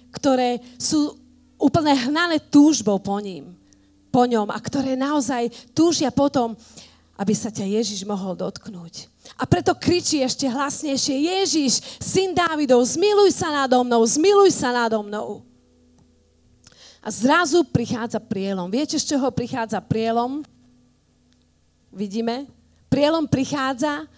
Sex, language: female, Slovak